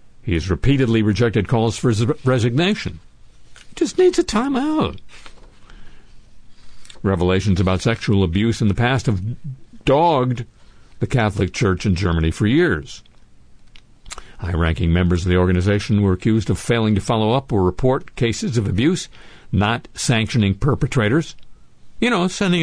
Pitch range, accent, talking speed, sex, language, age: 95-130 Hz, American, 140 wpm, male, English, 60-79